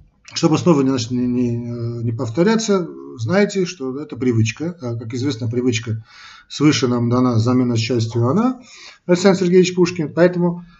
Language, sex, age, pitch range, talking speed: Russian, male, 40-59, 120-170 Hz, 115 wpm